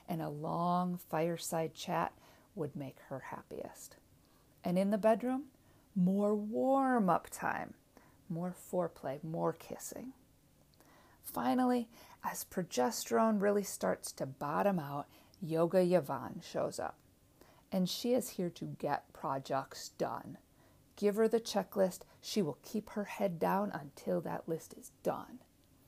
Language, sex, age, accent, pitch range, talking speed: English, female, 50-69, American, 175-230 Hz, 130 wpm